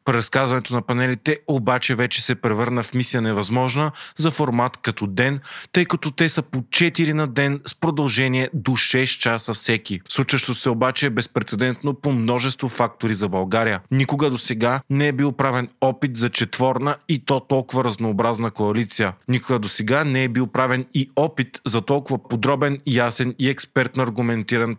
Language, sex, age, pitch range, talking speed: Bulgarian, male, 30-49, 115-135 Hz, 165 wpm